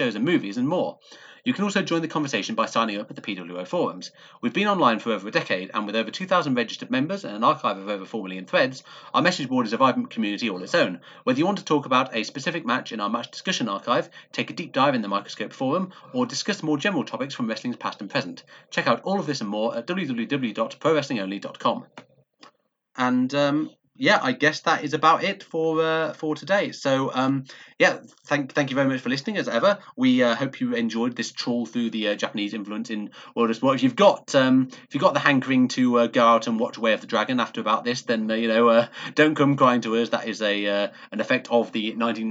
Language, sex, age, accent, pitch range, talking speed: English, male, 30-49, British, 115-155 Hz, 240 wpm